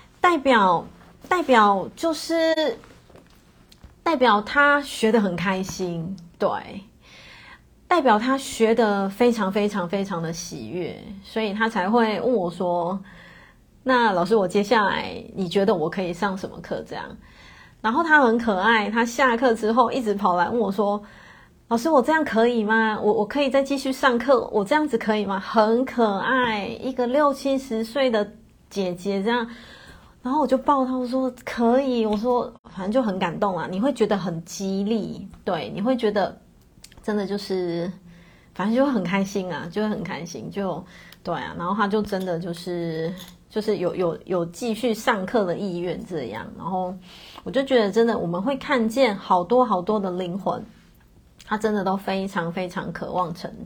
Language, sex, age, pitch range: Chinese, female, 20-39, 185-250 Hz